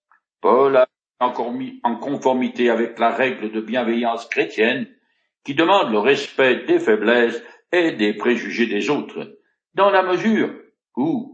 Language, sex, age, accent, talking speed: French, male, 60-79, French, 145 wpm